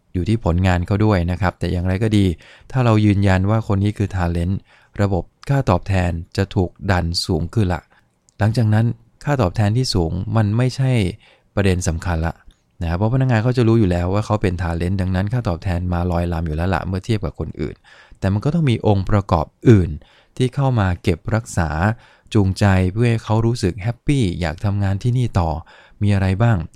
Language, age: English, 20-39